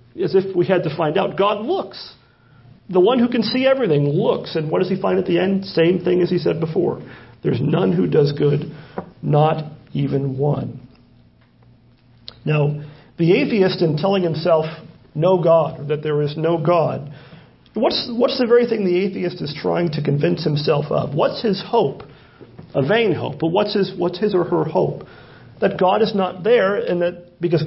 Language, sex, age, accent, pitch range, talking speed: English, male, 40-59, American, 150-195 Hz, 190 wpm